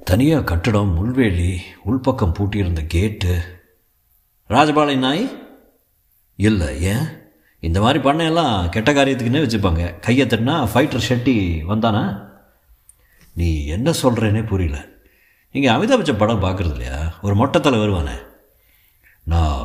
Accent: native